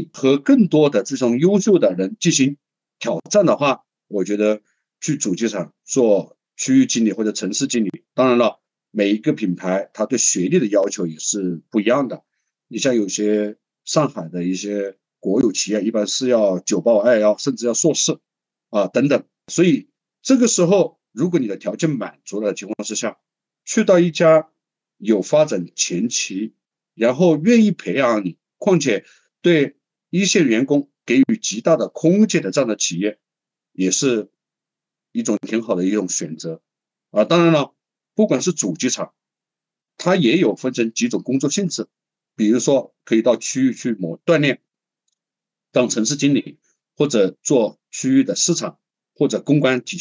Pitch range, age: 110-180 Hz, 50-69